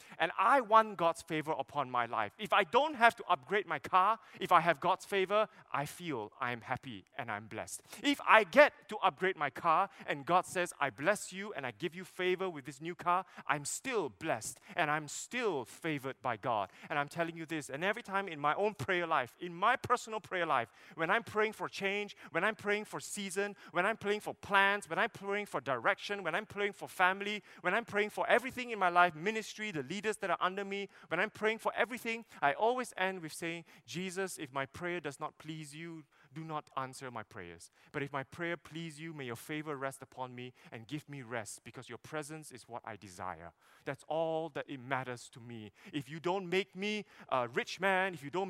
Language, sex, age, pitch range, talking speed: English, male, 20-39, 145-195 Hz, 225 wpm